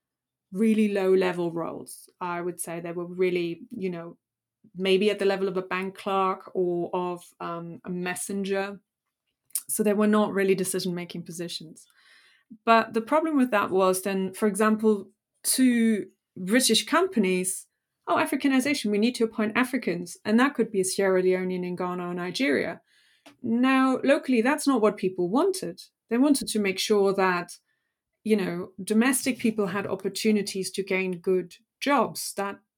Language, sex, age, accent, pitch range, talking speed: English, female, 30-49, British, 185-230 Hz, 160 wpm